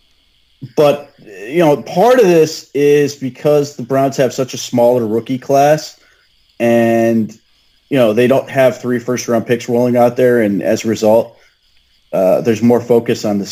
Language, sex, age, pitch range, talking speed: English, male, 30-49, 105-130 Hz, 175 wpm